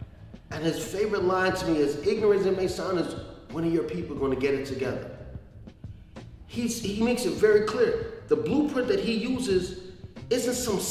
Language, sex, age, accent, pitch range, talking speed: English, male, 30-49, American, 165-225 Hz, 195 wpm